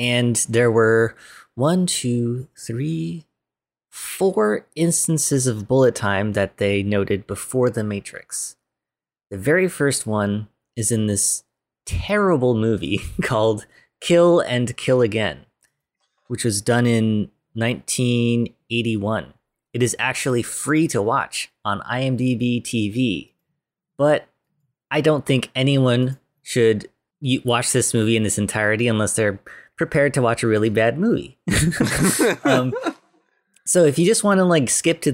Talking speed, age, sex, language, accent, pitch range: 130 wpm, 20-39, male, English, American, 110-140 Hz